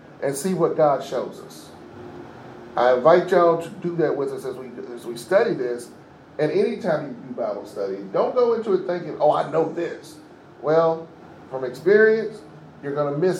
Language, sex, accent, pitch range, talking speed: English, male, American, 135-175 Hz, 185 wpm